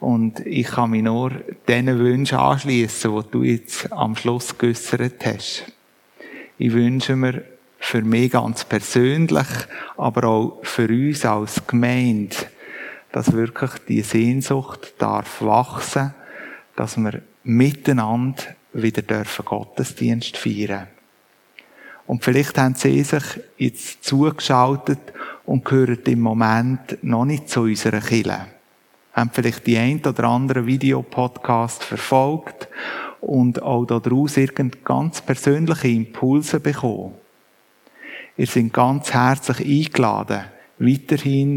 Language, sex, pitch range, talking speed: German, male, 115-135 Hz, 115 wpm